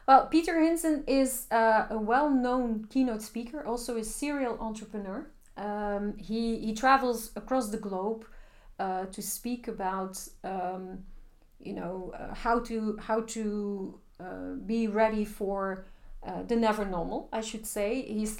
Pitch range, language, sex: 205-235 Hz, Dutch, female